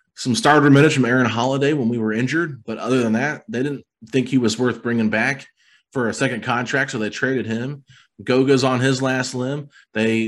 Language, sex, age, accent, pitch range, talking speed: English, male, 30-49, American, 110-135 Hz, 210 wpm